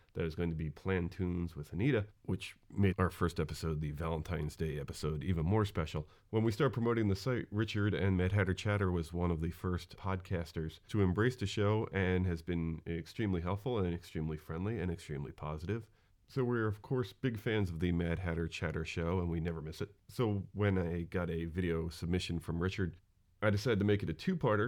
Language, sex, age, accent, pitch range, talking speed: English, male, 40-59, American, 80-100 Hz, 210 wpm